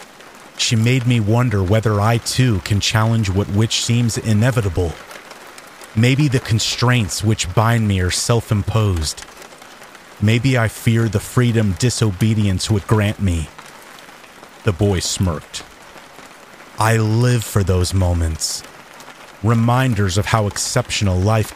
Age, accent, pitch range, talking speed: 30-49, American, 100-125 Hz, 120 wpm